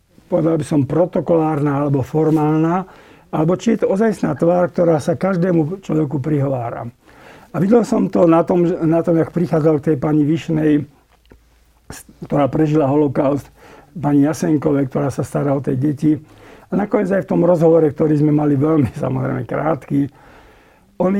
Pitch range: 150-180 Hz